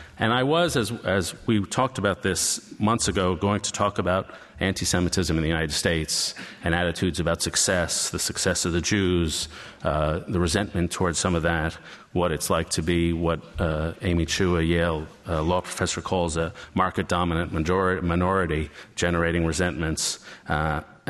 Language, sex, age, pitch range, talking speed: English, male, 40-59, 85-95 Hz, 160 wpm